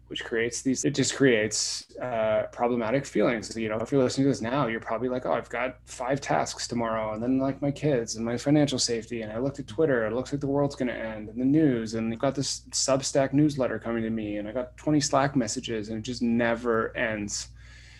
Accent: American